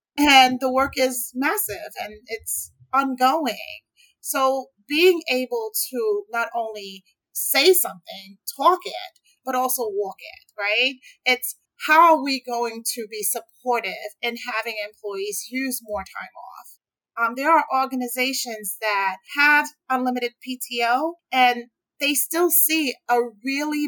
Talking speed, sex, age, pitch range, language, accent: 130 wpm, female, 30-49, 220-290 Hz, English, American